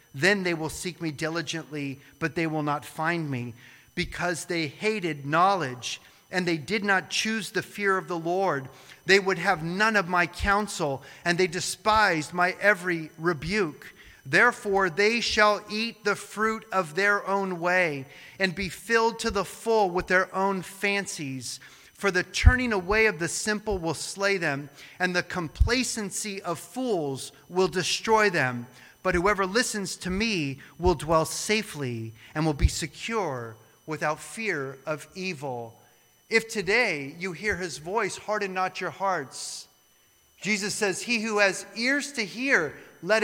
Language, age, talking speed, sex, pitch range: English, 30-49, 155 wpm, male, 160-205 Hz